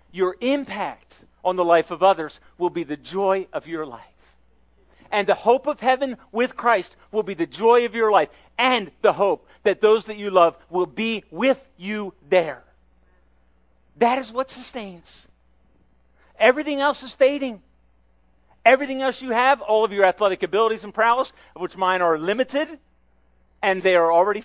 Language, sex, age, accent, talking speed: English, male, 40-59, American, 170 wpm